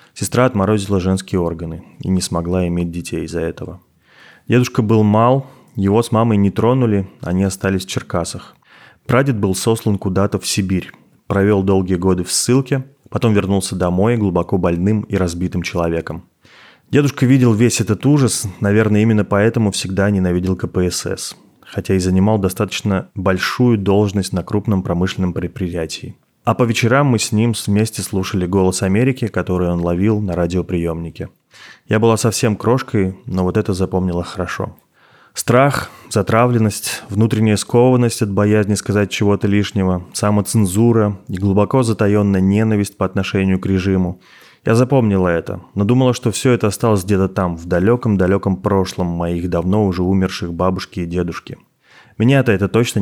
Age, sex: 20-39, male